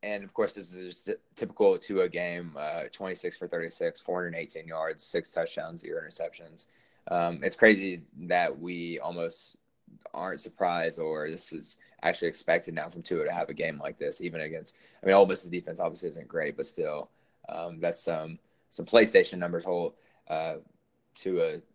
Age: 20-39